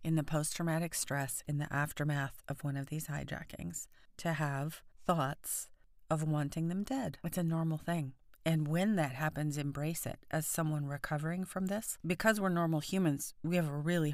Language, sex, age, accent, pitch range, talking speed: English, female, 40-59, American, 150-175 Hz, 180 wpm